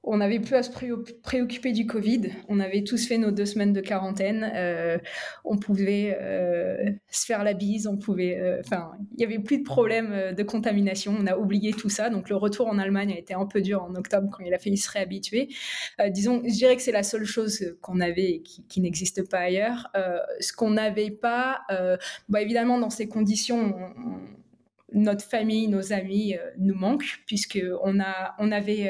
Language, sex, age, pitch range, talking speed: French, female, 20-39, 190-225 Hz, 210 wpm